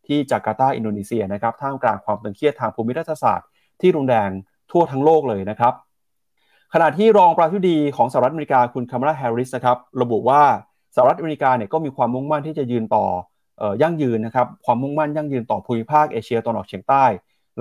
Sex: male